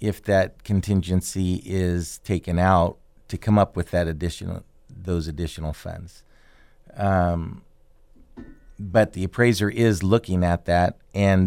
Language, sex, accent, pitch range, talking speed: English, male, American, 90-105 Hz, 125 wpm